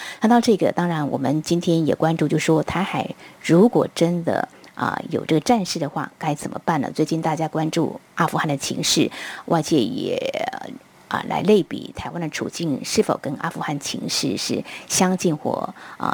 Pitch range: 155-205 Hz